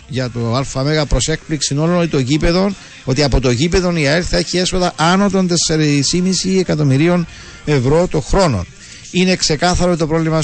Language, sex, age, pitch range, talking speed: Greek, male, 50-69, 115-165 Hz, 150 wpm